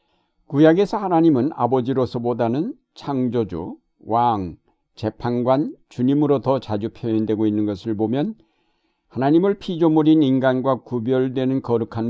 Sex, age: male, 60-79